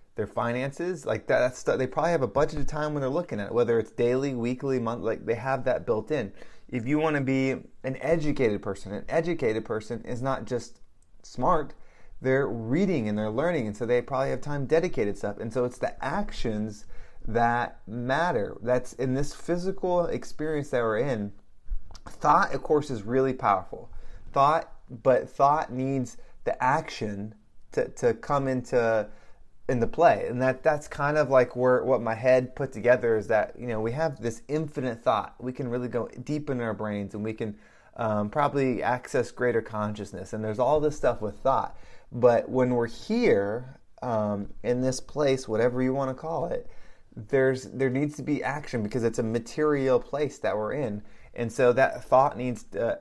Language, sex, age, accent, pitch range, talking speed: English, male, 20-39, American, 110-140 Hz, 190 wpm